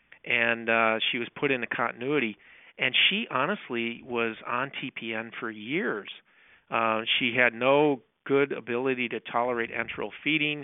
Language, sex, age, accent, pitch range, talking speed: English, male, 40-59, American, 110-125 Hz, 140 wpm